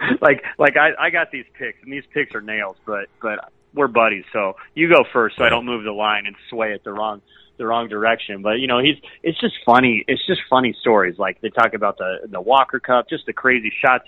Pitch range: 105-130 Hz